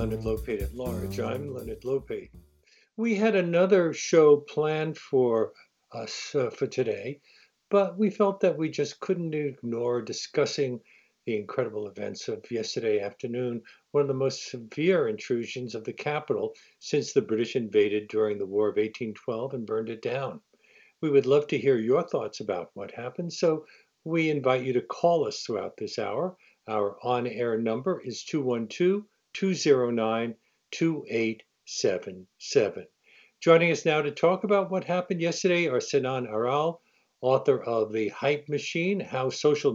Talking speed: 150 wpm